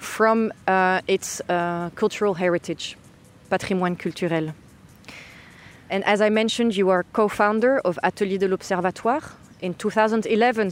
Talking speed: 120 wpm